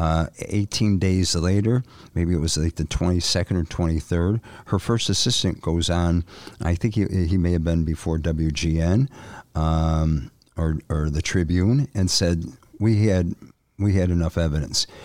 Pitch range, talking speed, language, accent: 85-105 Hz, 155 wpm, English, American